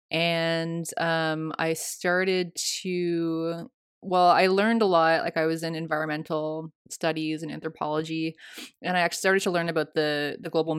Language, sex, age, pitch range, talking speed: English, female, 20-39, 160-180 Hz, 155 wpm